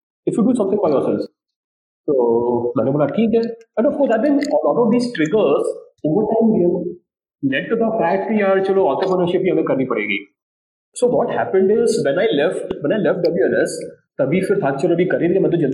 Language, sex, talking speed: English, male, 170 wpm